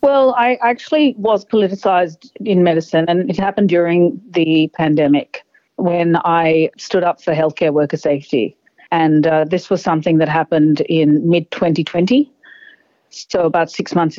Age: 40-59